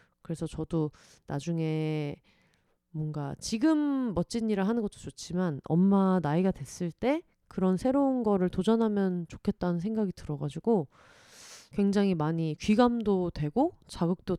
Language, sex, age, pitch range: Korean, female, 30-49, 170-230 Hz